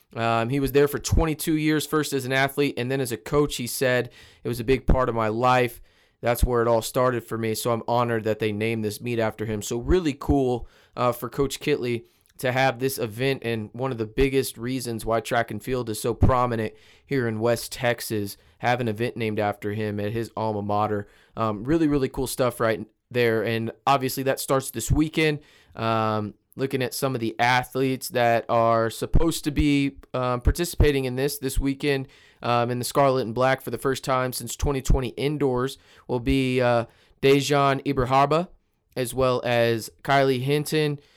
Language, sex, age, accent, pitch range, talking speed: English, male, 20-39, American, 115-135 Hz, 195 wpm